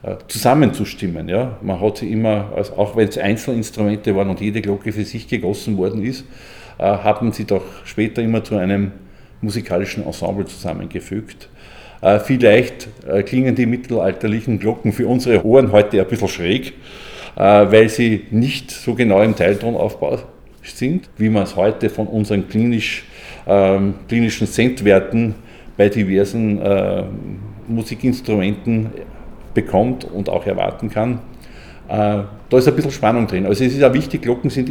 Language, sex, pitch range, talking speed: German, male, 100-115 Hz, 150 wpm